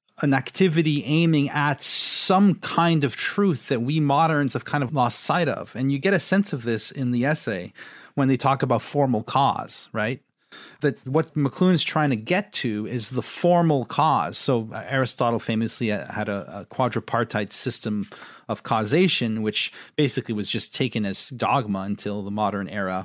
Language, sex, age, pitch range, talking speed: English, male, 40-59, 115-155 Hz, 170 wpm